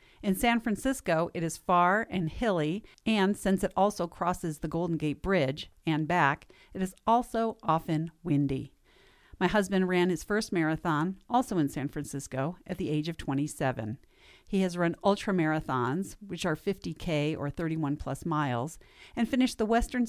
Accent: American